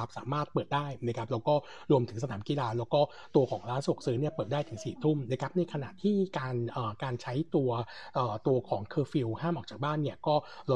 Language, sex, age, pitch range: Thai, male, 60-79, 120-155 Hz